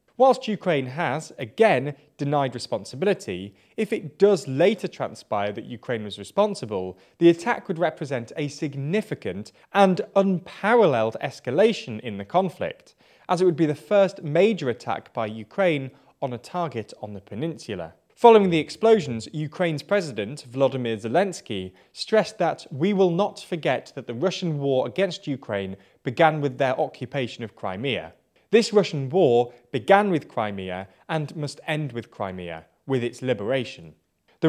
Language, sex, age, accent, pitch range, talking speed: English, male, 20-39, British, 120-175 Hz, 145 wpm